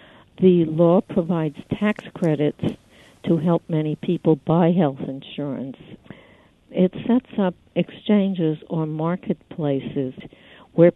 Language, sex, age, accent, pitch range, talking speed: English, female, 60-79, American, 145-170 Hz, 105 wpm